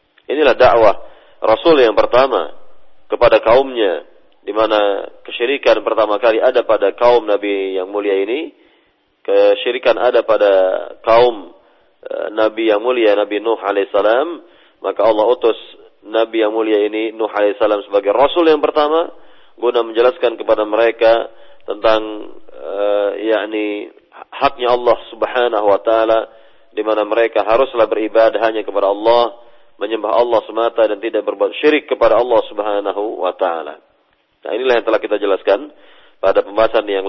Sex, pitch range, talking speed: male, 105-140 Hz, 140 wpm